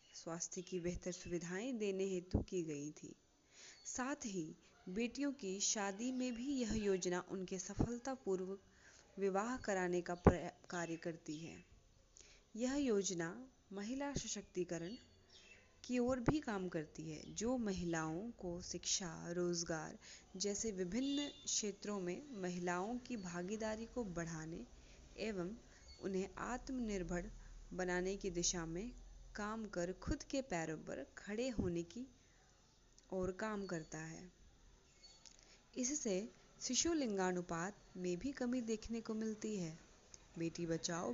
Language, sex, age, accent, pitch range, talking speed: Hindi, female, 20-39, native, 175-220 Hz, 95 wpm